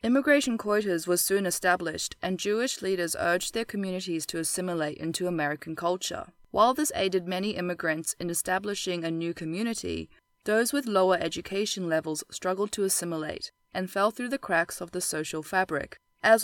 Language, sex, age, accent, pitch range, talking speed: English, female, 20-39, Australian, 170-205 Hz, 160 wpm